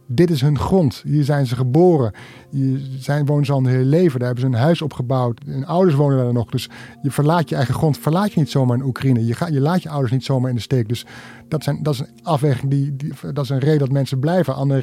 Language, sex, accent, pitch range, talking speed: Dutch, male, Dutch, 125-150 Hz, 265 wpm